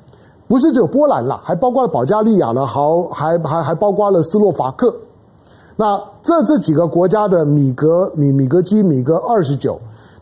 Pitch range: 160-245 Hz